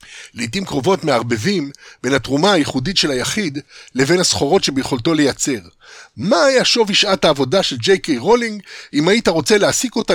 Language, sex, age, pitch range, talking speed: Hebrew, male, 60-79, 130-180 Hz, 155 wpm